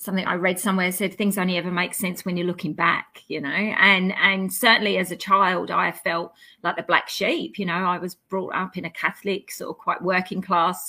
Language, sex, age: English, female, 30-49